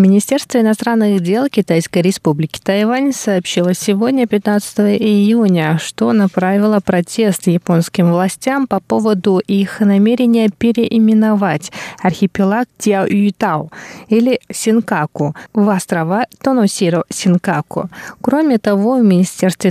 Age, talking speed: 20-39, 95 wpm